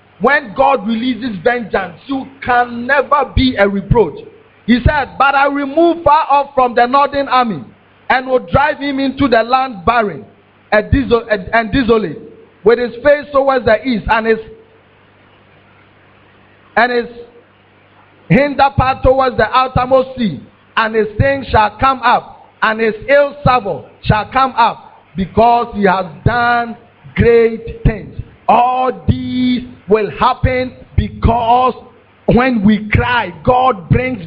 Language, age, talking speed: English, 50-69, 135 wpm